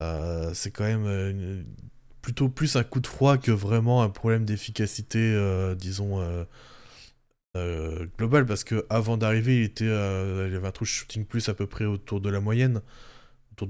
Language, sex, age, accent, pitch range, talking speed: French, male, 20-39, French, 105-130 Hz, 190 wpm